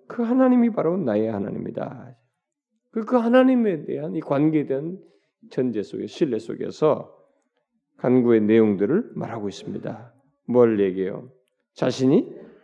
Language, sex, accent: Korean, male, native